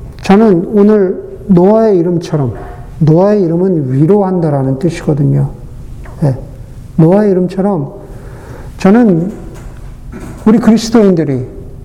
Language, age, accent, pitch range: Korean, 50-69, native, 130-180 Hz